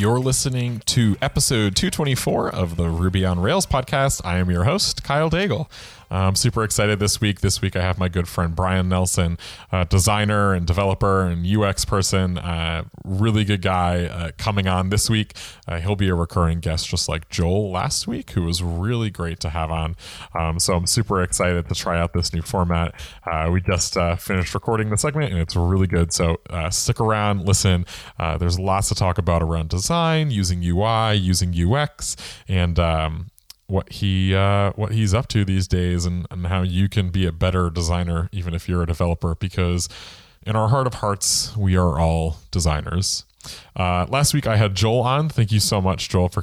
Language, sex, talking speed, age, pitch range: English, male, 200 wpm, 30-49, 85-110 Hz